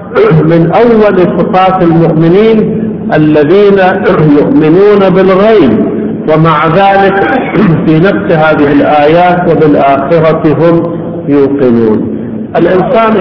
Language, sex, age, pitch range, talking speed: Arabic, male, 50-69, 155-190 Hz, 75 wpm